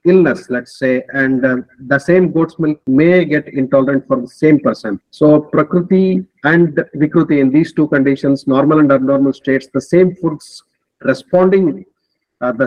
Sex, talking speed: male, 160 wpm